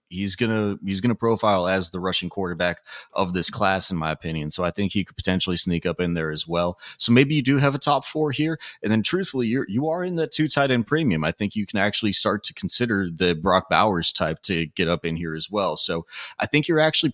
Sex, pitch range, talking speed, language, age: male, 90-105 Hz, 250 wpm, English, 30-49